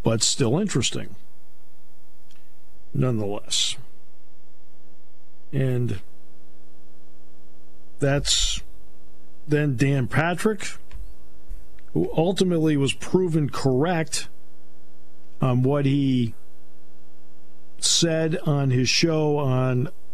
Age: 50-69